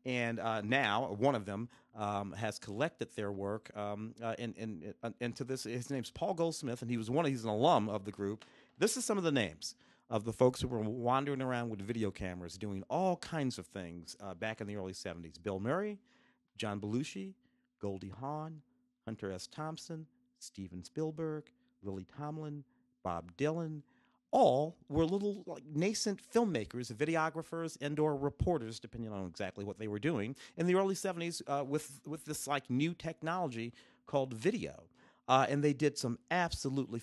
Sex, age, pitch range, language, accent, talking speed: male, 40-59, 110-155 Hz, English, American, 175 wpm